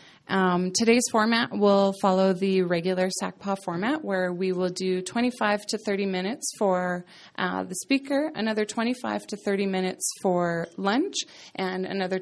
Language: English